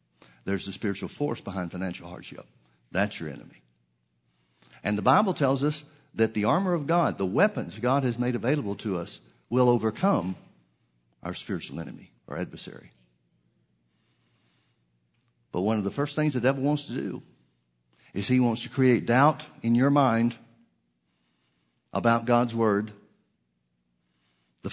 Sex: male